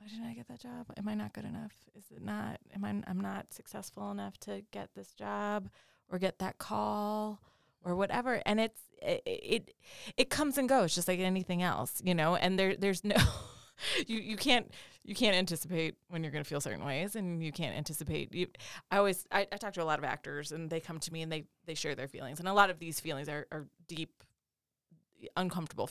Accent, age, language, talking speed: American, 20-39, English, 225 wpm